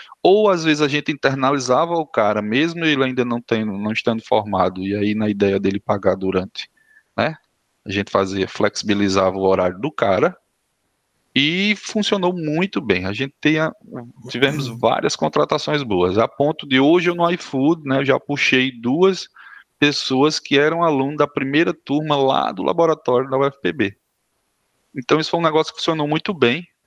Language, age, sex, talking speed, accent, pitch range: Portuguese, 20-39, male, 170 wpm, Brazilian, 110-155 Hz